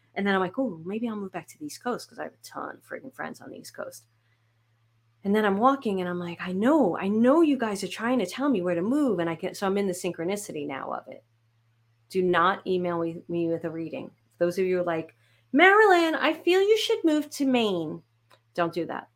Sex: female